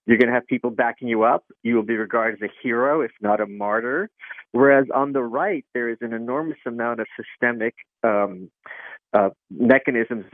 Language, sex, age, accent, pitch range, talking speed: English, male, 40-59, American, 110-135 Hz, 190 wpm